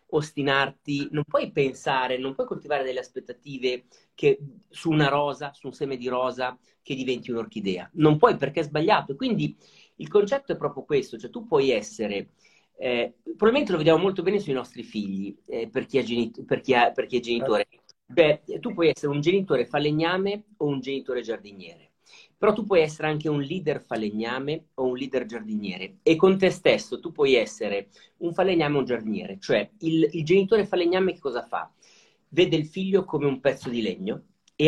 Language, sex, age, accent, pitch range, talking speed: Italian, male, 40-59, native, 135-205 Hz, 190 wpm